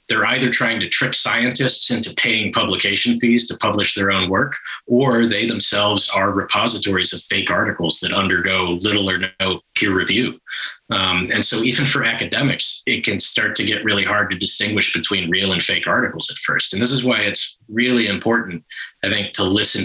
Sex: male